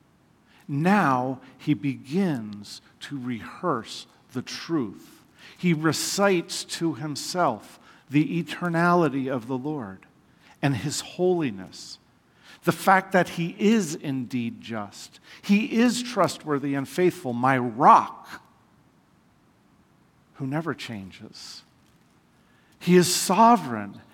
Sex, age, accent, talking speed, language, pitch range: male, 50-69, American, 95 wpm, English, 130-175 Hz